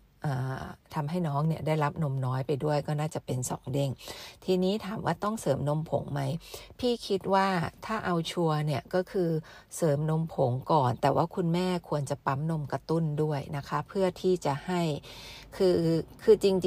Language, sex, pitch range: Thai, female, 140-175 Hz